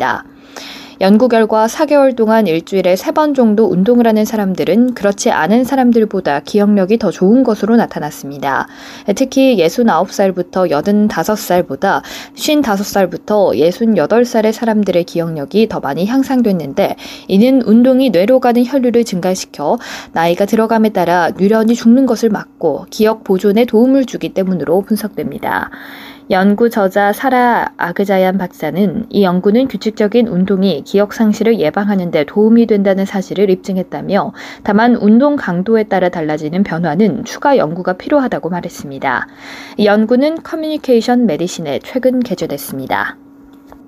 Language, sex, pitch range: Korean, female, 190-245 Hz